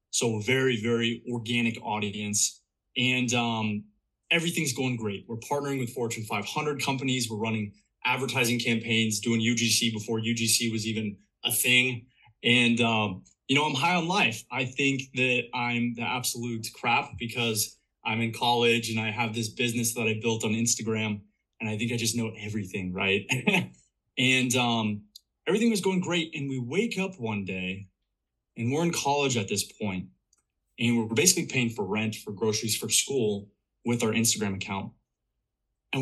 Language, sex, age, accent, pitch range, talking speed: English, male, 20-39, American, 110-130 Hz, 165 wpm